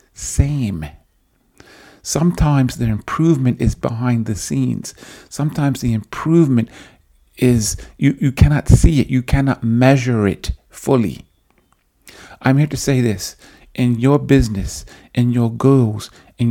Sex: male